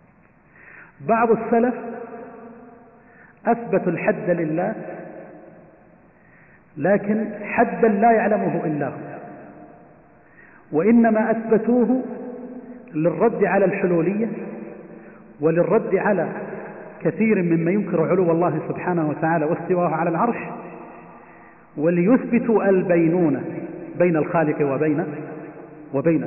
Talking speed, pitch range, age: 80 wpm, 165-220 Hz, 40-59